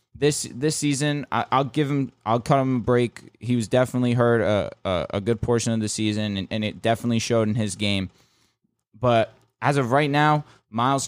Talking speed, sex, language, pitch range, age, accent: 205 wpm, male, English, 110-135 Hz, 20-39, American